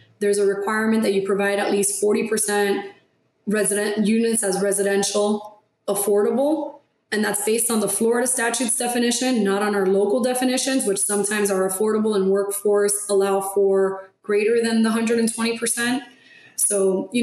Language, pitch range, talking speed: English, 200-235 Hz, 145 wpm